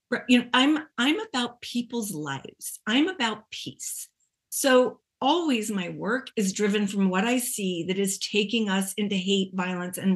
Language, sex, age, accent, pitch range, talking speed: English, female, 40-59, American, 210-260 Hz, 165 wpm